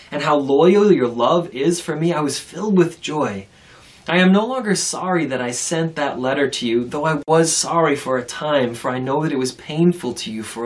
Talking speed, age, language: 235 wpm, 20-39, English